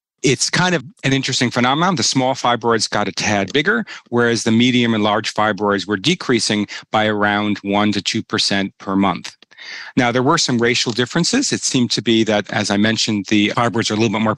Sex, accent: male, American